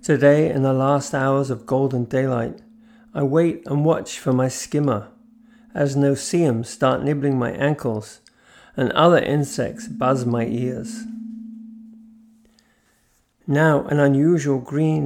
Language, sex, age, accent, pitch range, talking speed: English, male, 50-69, British, 125-155 Hz, 125 wpm